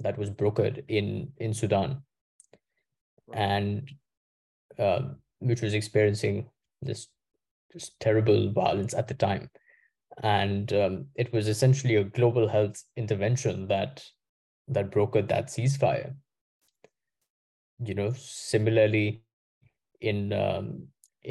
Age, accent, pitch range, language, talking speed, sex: 20-39, Indian, 100-130 Hz, English, 105 wpm, male